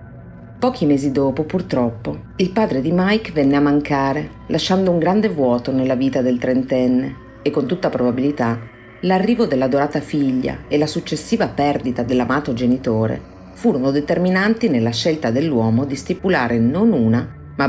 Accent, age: native, 40-59